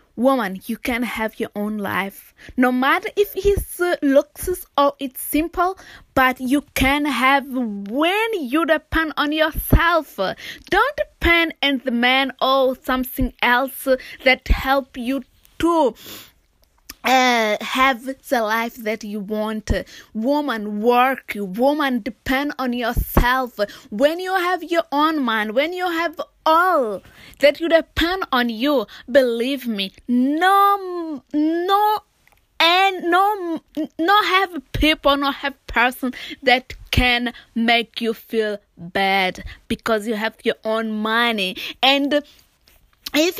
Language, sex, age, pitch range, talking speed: English, female, 20-39, 235-320 Hz, 125 wpm